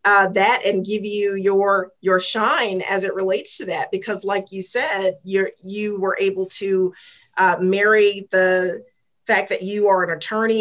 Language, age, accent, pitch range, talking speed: English, 40-59, American, 185-215 Hz, 175 wpm